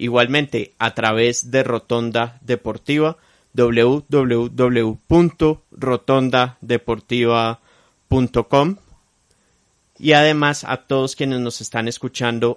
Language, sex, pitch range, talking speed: Spanish, male, 110-130 Hz, 70 wpm